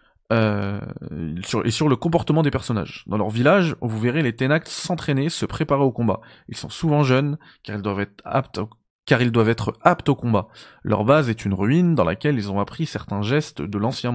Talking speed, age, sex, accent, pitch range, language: 215 wpm, 20-39, male, French, 110-150 Hz, French